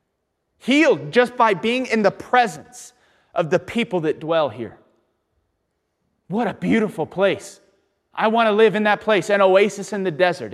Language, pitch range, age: English, 140-190 Hz, 30-49